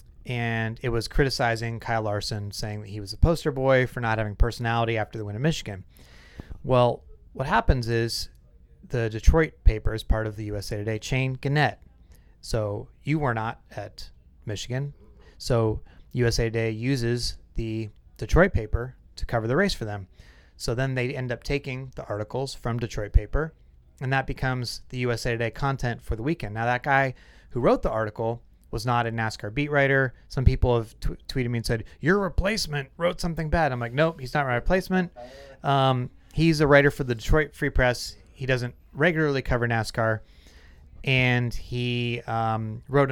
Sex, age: male, 30-49